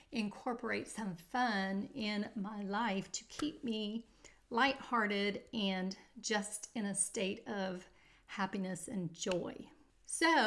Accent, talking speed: American, 115 wpm